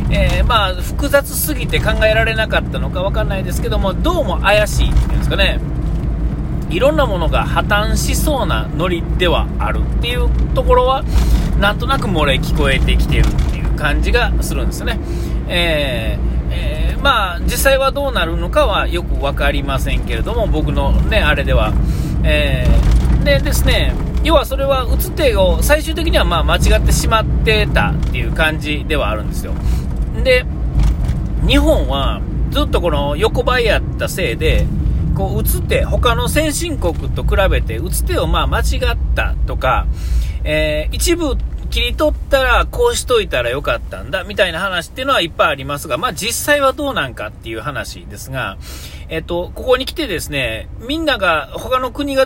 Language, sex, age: Japanese, male, 40-59